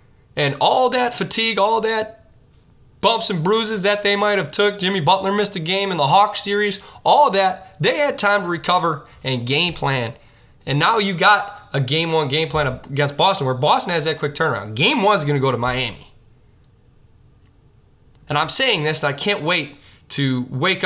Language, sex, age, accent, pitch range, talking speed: English, male, 20-39, American, 130-195 Hz, 195 wpm